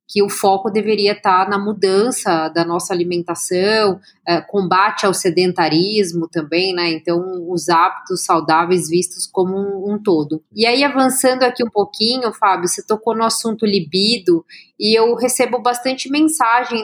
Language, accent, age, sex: Portuguese, Brazilian, 20-39, female